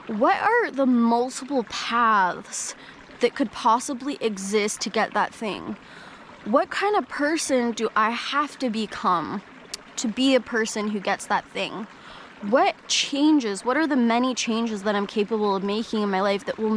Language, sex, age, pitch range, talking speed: English, female, 10-29, 205-240 Hz, 170 wpm